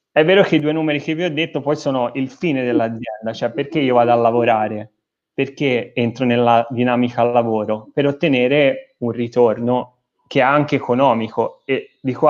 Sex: male